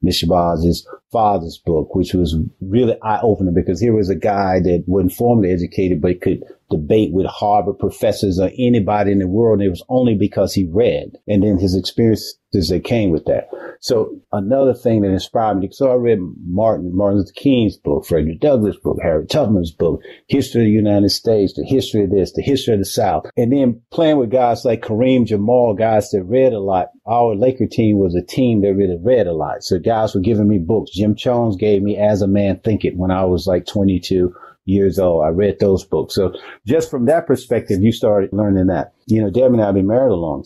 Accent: American